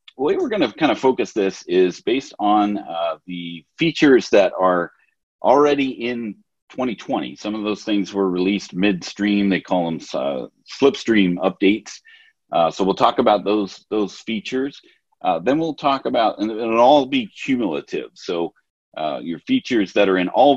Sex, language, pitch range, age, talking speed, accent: male, English, 95-135 Hz, 40-59, 170 wpm, American